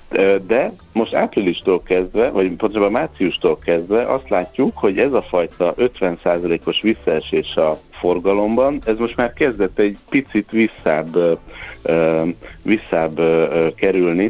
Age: 60-79